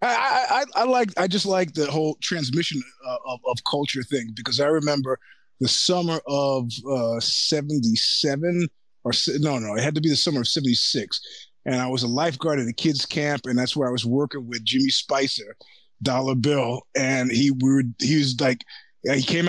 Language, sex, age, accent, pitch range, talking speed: English, male, 30-49, American, 130-165 Hz, 195 wpm